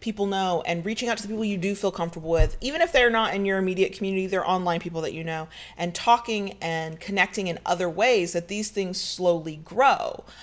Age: 30-49